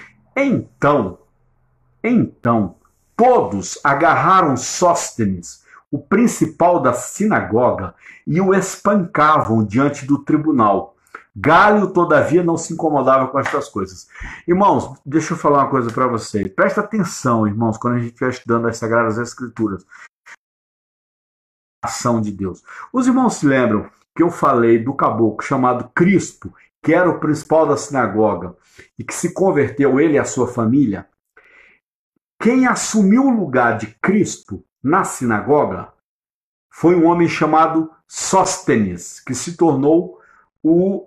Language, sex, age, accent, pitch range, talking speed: Portuguese, male, 50-69, Brazilian, 125-195 Hz, 130 wpm